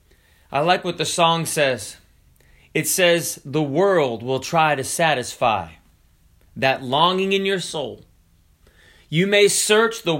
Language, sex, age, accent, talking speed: English, male, 30-49, American, 135 wpm